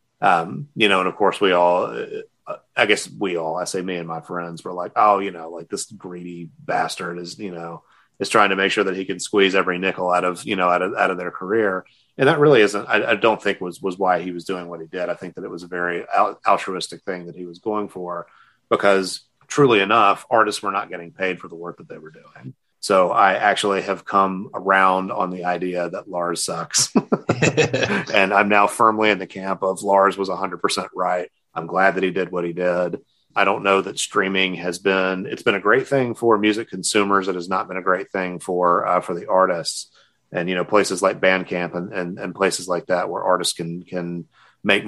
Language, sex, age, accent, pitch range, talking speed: English, male, 30-49, American, 90-95 Hz, 230 wpm